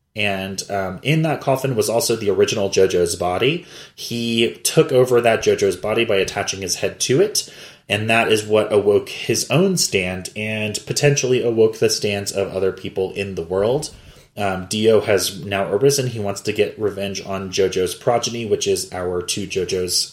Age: 20-39